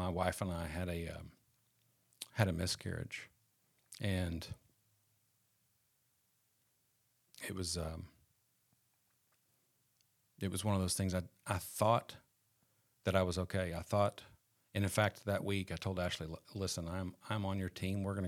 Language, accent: English, American